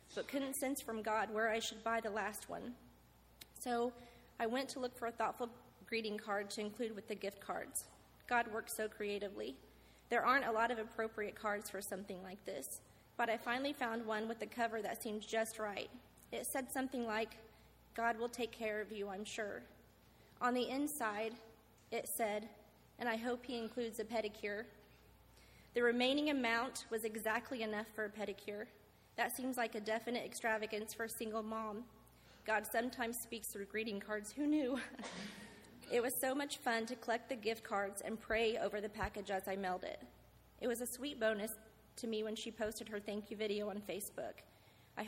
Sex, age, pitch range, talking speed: female, 30-49, 210-240 Hz, 190 wpm